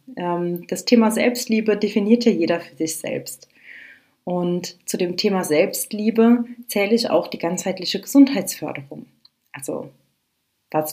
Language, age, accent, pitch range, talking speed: German, 30-49, German, 165-210 Hz, 120 wpm